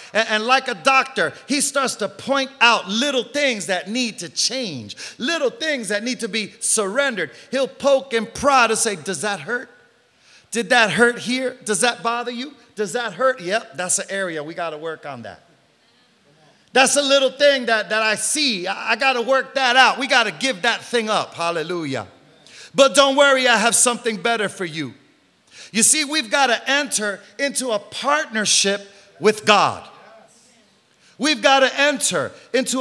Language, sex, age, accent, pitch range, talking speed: English, male, 40-59, American, 215-270 Hz, 185 wpm